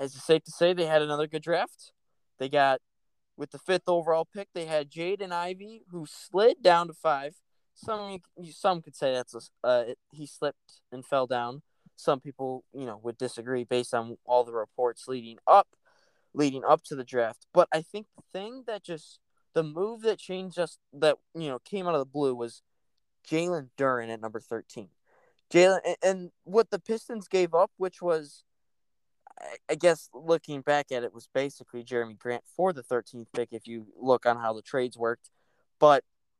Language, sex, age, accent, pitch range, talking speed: English, male, 20-39, American, 125-175 Hz, 190 wpm